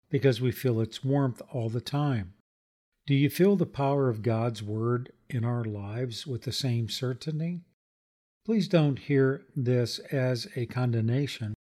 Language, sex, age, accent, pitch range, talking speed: English, male, 50-69, American, 115-140 Hz, 155 wpm